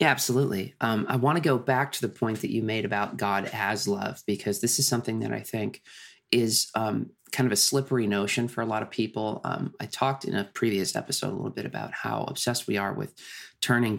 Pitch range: 100-120 Hz